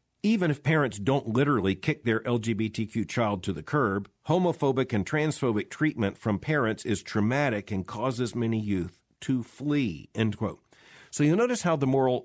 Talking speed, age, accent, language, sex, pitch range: 165 wpm, 50-69, American, English, male, 105-150 Hz